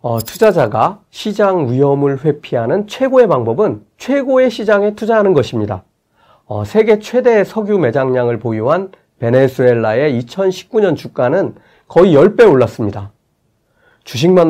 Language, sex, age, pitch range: Korean, male, 40-59, 120-195 Hz